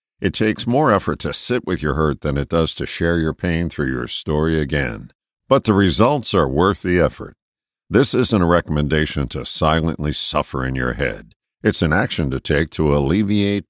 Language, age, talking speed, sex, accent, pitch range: English, 50-69, 195 wpm, male, American, 75-105 Hz